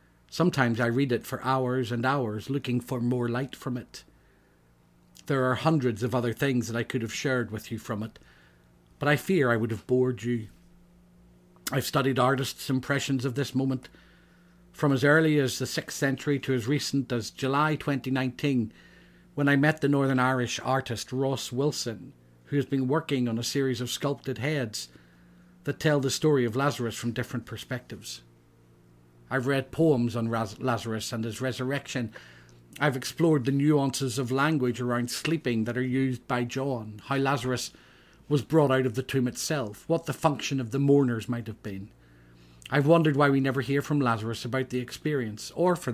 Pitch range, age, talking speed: 115-140 Hz, 50-69, 180 wpm